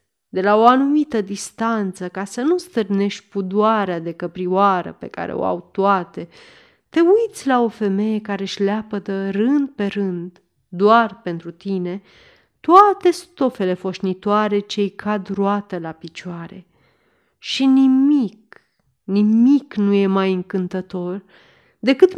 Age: 30-49